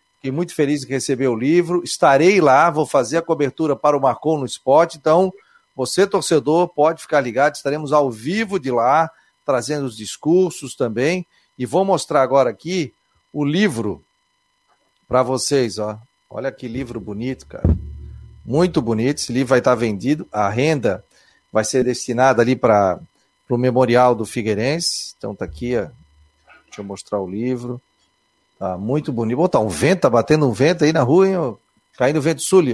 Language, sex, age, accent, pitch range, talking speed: Portuguese, male, 40-59, Brazilian, 120-155 Hz, 175 wpm